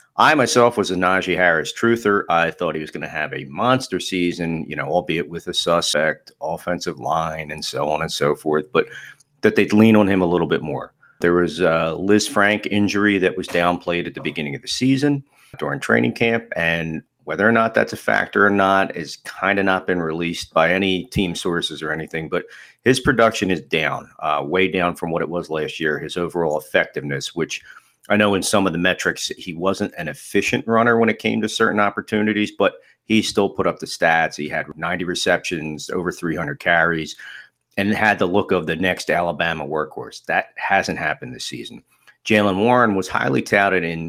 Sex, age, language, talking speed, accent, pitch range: male, 40-59, English, 205 wpm, American, 85-105 Hz